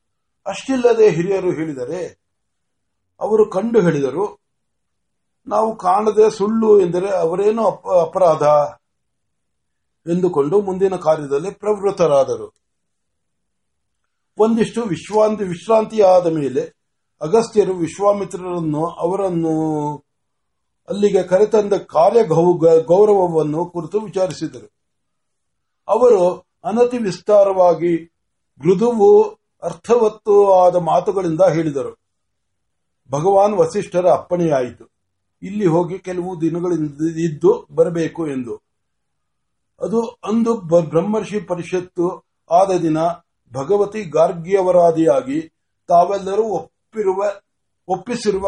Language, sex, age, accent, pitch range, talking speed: Marathi, male, 60-79, native, 160-205 Hz, 35 wpm